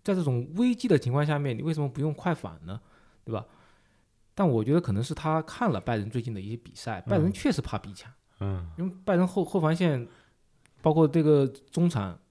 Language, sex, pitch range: Chinese, male, 110-160 Hz